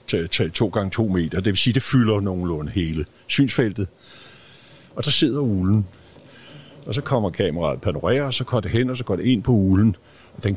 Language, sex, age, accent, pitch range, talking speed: Danish, male, 60-79, native, 105-145 Hz, 215 wpm